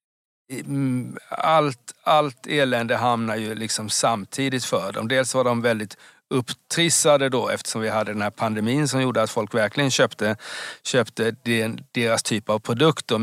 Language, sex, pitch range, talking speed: Swedish, male, 110-135 Hz, 145 wpm